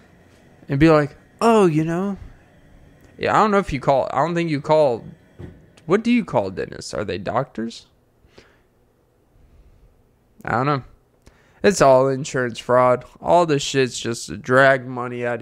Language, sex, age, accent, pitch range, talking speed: English, male, 20-39, American, 120-155 Hz, 160 wpm